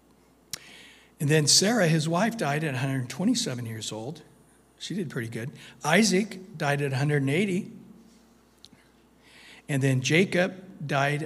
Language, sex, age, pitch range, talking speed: English, male, 60-79, 135-165 Hz, 115 wpm